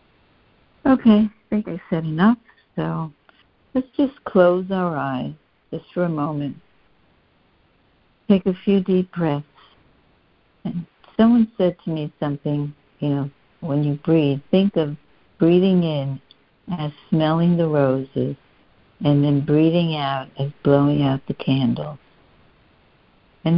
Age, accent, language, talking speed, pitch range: 60-79, American, English, 125 wpm, 140-180 Hz